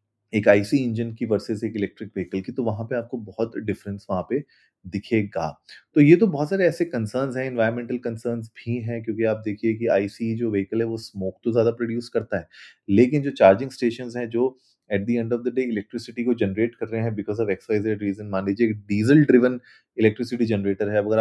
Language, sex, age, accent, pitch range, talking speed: Hindi, male, 30-49, native, 105-125 Hz, 200 wpm